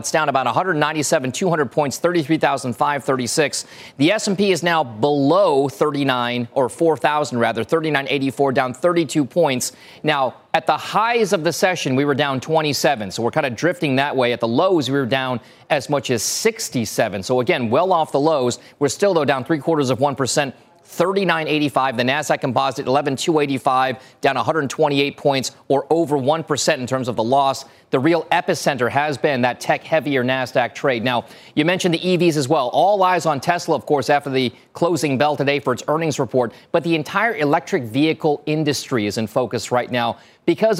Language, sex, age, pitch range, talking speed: English, male, 30-49, 130-160 Hz, 180 wpm